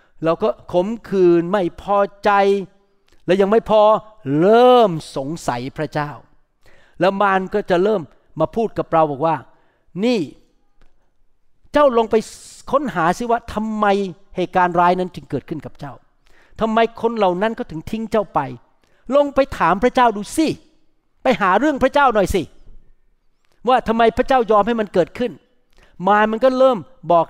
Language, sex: Thai, male